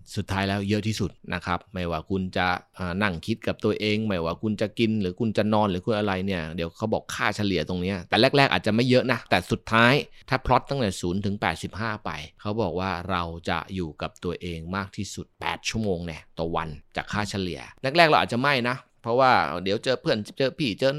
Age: 20-39